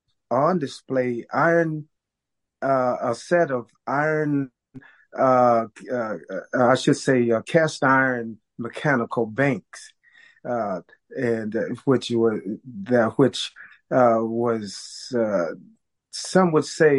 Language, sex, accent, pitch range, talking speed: English, male, American, 115-135 Hz, 115 wpm